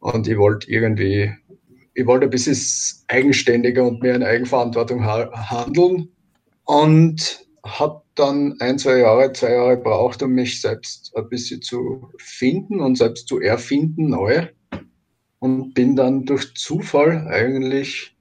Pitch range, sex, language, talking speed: 120-145 Hz, male, German, 135 wpm